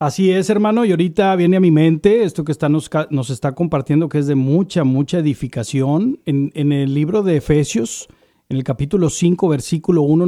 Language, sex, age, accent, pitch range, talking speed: Spanish, male, 40-59, Mexican, 165-235 Hz, 195 wpm